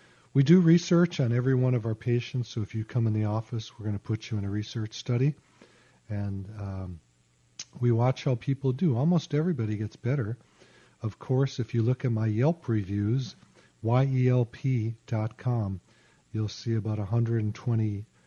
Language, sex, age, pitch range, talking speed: English, male, 40-59, 105-125 Hz, 170 wpm